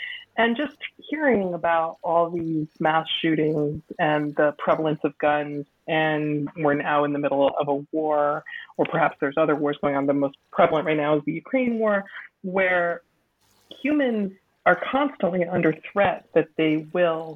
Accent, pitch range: American, 150-175 Hz